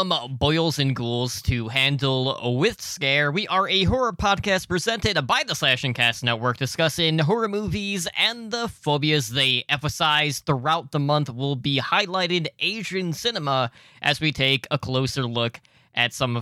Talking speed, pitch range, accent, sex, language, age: 160 wpm, 130-185 Hz, American, male, English, 20-39